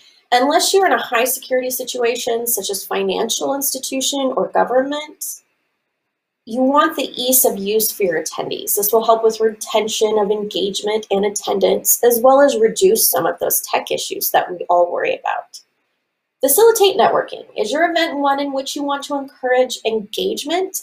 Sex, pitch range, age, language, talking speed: female, 225-330 Hz, 30-49, English, 165 wpm